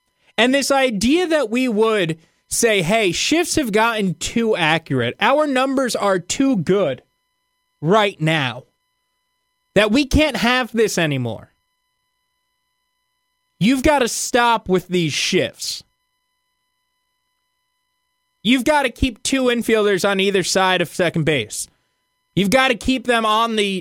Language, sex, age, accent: English, male, 20-39, American